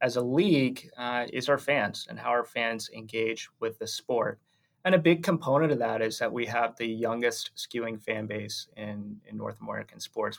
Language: English